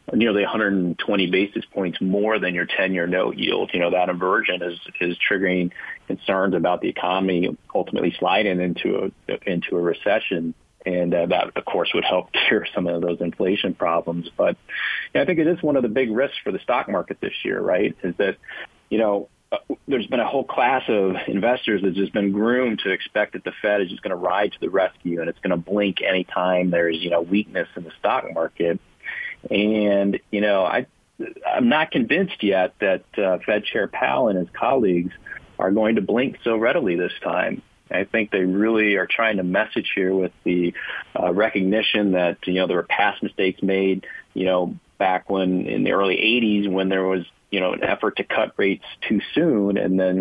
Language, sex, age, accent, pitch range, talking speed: English, male, 30-49, American, 90-100 Hz, 205 wpm